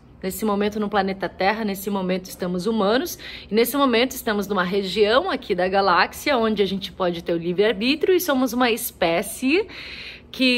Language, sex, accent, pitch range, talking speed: Portuguese, female, Brazilian, 190-250 Hz, 170 wpm